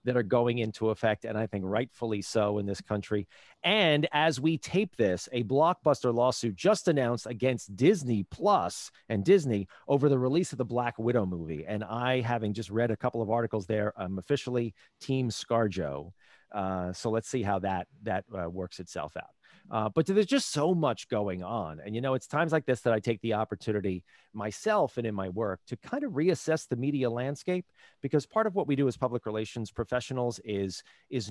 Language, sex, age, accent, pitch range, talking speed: English, male, 40-59, American, 105-140 Hz, 200 wpm